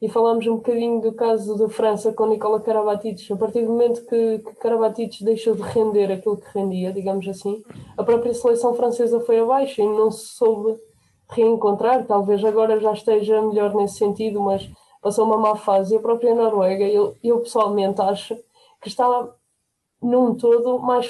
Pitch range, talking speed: 210-235 Hz, 175 wpm